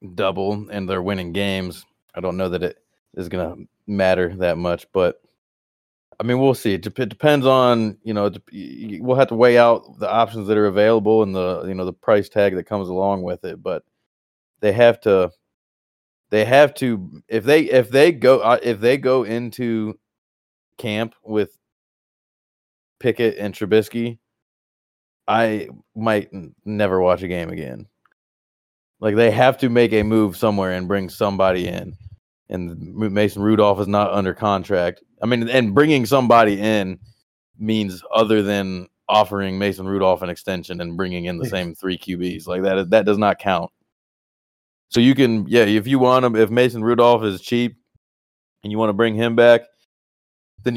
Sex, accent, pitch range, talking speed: male, American, 95-115 Hz, 170 wpm